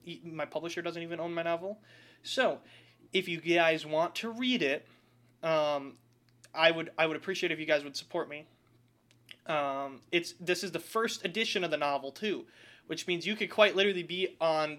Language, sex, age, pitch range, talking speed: English, male, 20-39, 140-175 Hz, 185 wpm